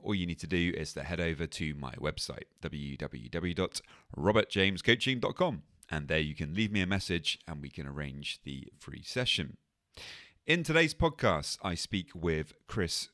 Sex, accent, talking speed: male, British, 160 wpm